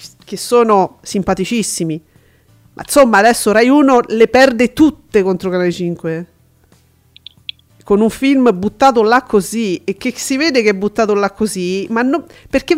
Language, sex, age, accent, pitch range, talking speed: Italian, female, 40-59, native, 200-275 Hz, 150 wpm